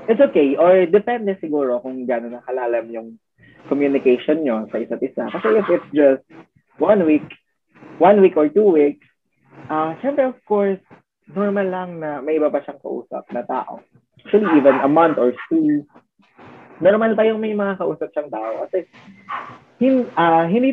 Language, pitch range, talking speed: Filipino, 125-185 Hz, 160 wpm